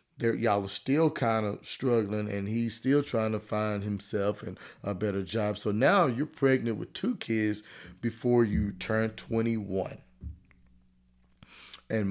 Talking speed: 145 wpm